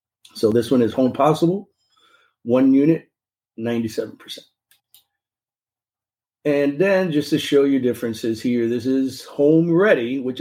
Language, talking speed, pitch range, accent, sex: English, 125 wpm, 115-145 Hz, American, male